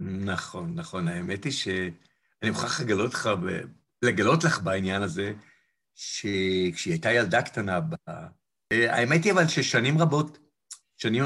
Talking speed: 125 wpm